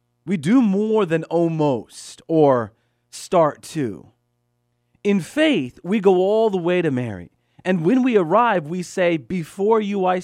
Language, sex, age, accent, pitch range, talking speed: English, male, 40-59, American, 120-160 Hz, 150 wpm